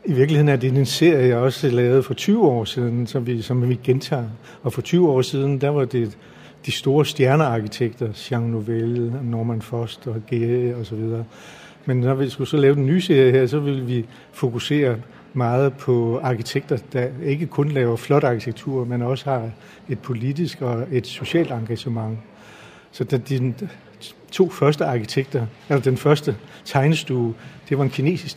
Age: 60-79